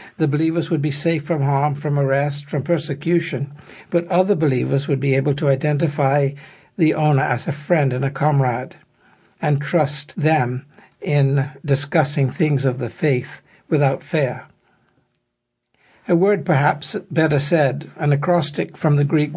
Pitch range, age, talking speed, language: 140-165 Hz, 60-79, 150 wpm, English